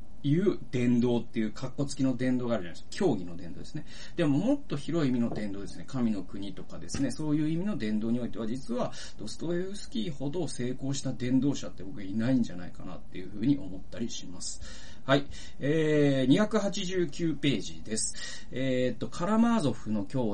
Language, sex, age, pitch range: Japanese, male, 40-59, 115-180 Hz